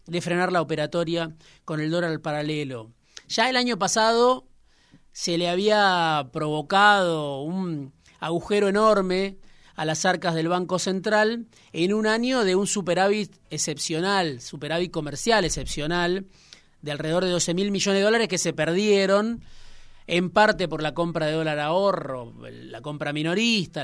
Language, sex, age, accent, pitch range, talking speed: Spanish, male, 30-49, Argentinian, 155-195 Hz, 145 wpm